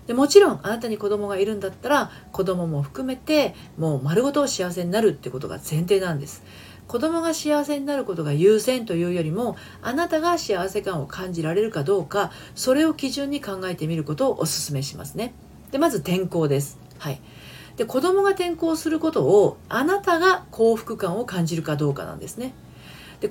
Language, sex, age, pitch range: Japanese, female, 40-59, 155-255 Hz